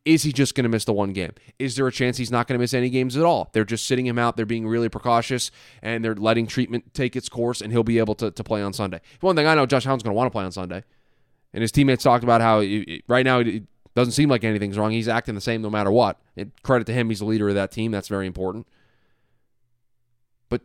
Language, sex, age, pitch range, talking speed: English, male, 20-39, 110-135 Hz, 275 wpm